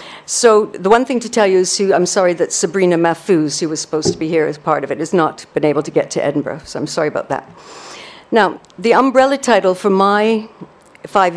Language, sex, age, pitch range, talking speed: English, female, 60-79, 170-205 Hz, 225 wpm